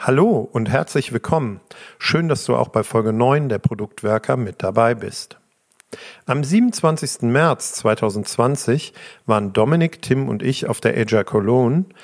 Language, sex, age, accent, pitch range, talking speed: German, male, 50-69, German, 105-140 Hz, 145 wpm